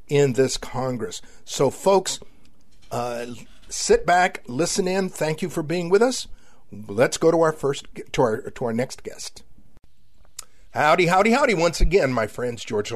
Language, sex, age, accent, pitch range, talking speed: English, male, 50-69, American, 115-165 Hz, 160 wpm